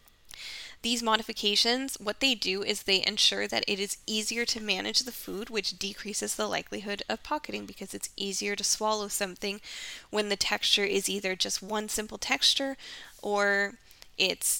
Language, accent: English, American